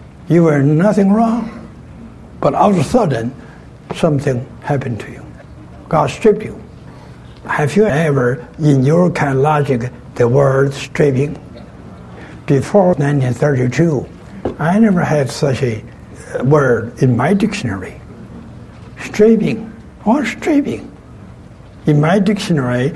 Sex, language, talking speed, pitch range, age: male, English, 115 wpm, 125-175 Hz, 60-79